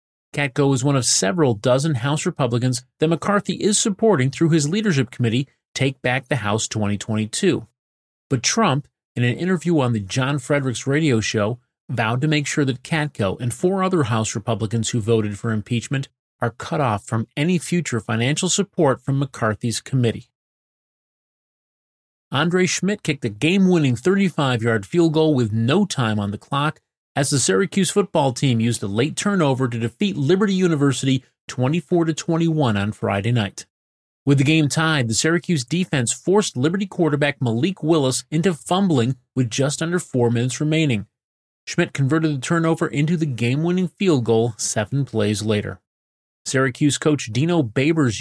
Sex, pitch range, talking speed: male, 120-160 Hz, 155 wpm